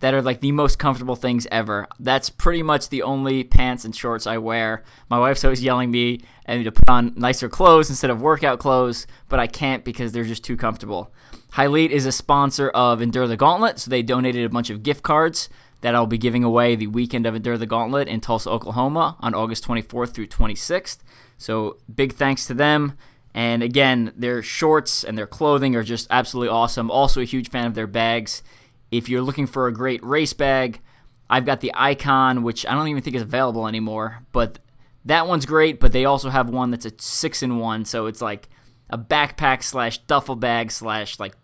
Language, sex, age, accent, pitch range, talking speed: English, male, 20-39, American, 115-135 Hz, 205 wpm